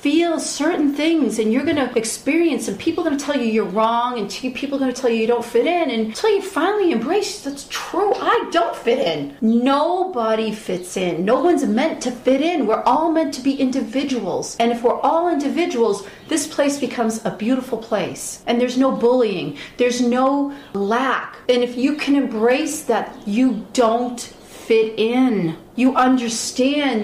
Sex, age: female, 40-59